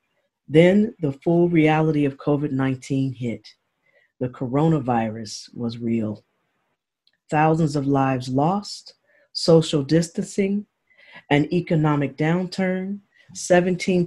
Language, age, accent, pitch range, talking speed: English, 40-59, American, 135-170 Hz, 90 wpm